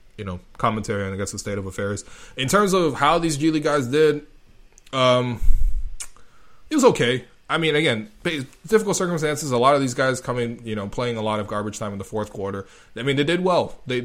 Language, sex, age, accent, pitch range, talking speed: English, male, 20-39, American, 105-130 Hz, 220 wpm